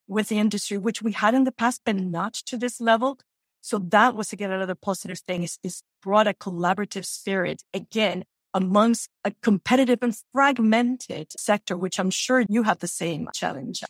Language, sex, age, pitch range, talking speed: English, female, 40-59, 180-215 Hz, 180 wpm